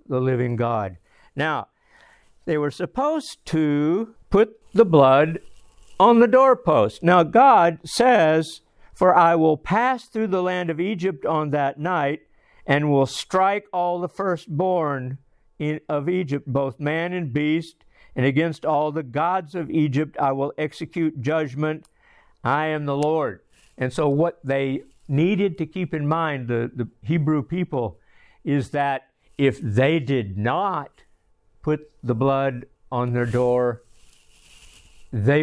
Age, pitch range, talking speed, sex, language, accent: 60-79, 125-160 Hz, 140 wpm, male, English, American